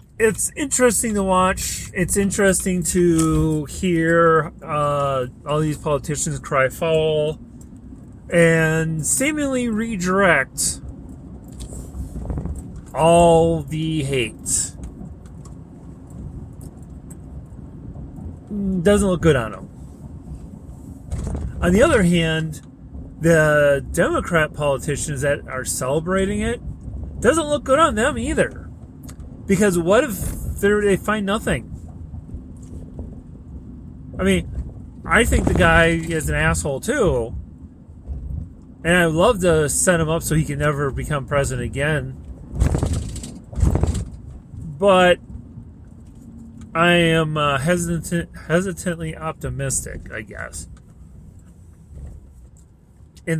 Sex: male